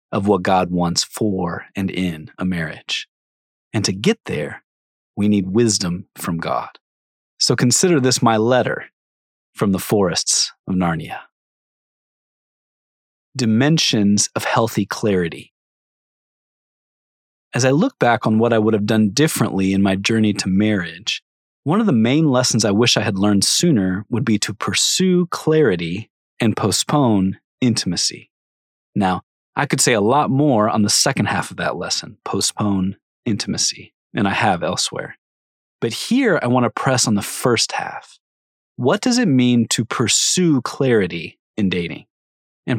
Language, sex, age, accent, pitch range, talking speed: English, male, 30-49, American, 90-125 Hz, 150 wpm